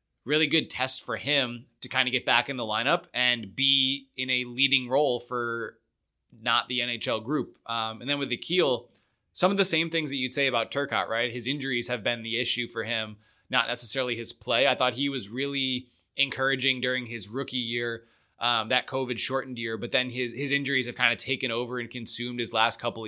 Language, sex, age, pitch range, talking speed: English, male, 20-39, 120-135 Hz, 215 wpm